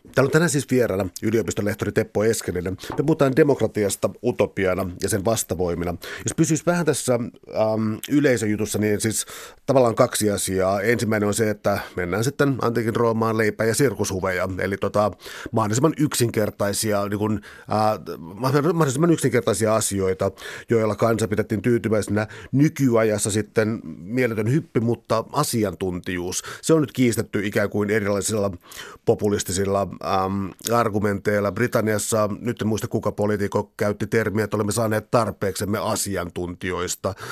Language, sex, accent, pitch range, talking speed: Finnish, male, native, 100-115 Hz, 130 wpm